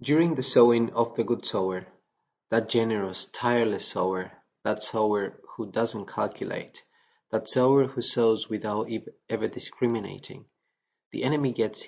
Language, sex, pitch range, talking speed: English, male, 105-125 Hz, 130 wpm